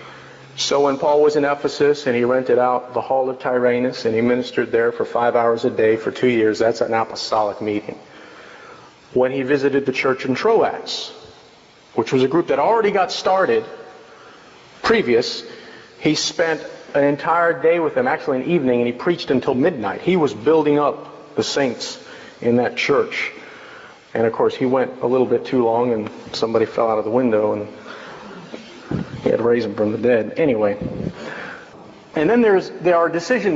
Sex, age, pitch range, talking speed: male, 40-59, 120-165 Hz, 180 wpm